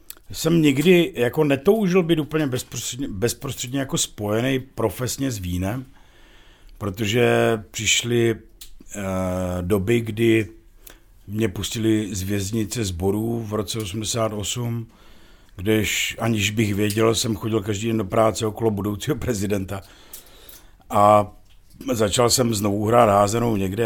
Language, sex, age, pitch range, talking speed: Czech, male, 50-69, 95-115 Hz, 115 wpm